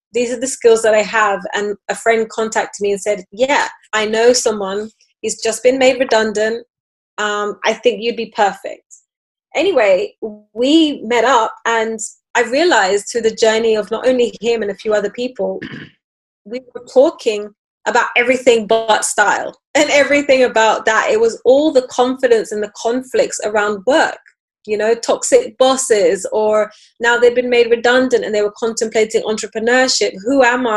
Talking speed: 170 wpm